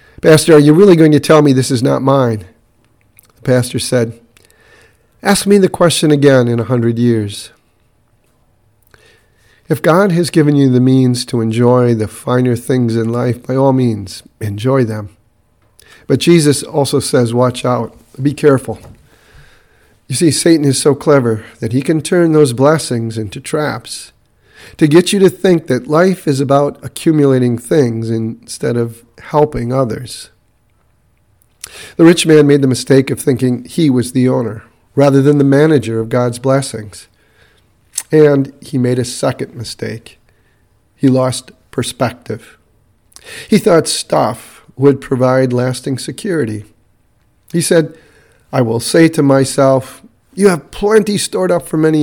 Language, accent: English, American